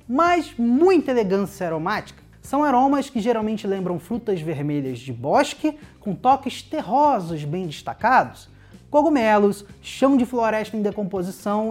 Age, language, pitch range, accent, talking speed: 20-39, Portuguese, 200-255 Hz, Brazilian, 125 wpm